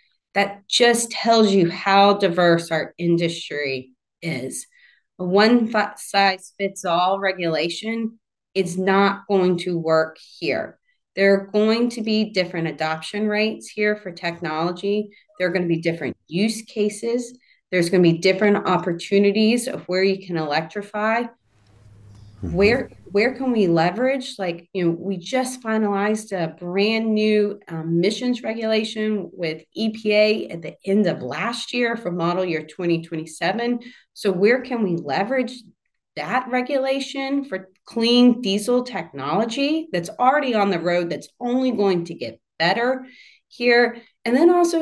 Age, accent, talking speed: 30-49, American, 140 wpm